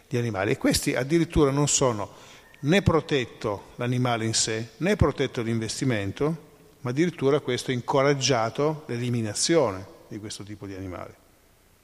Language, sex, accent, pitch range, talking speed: Italian, male, native, 105-145 Hz, 125 wpm